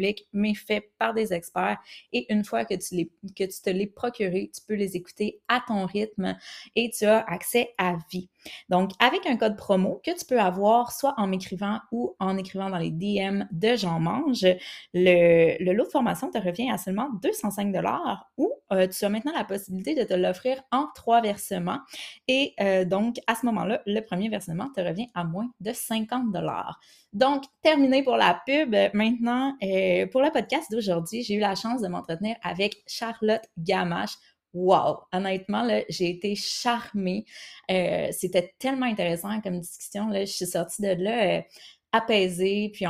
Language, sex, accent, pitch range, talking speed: French, female, Canadian, 185-235 Hz, 180 wpm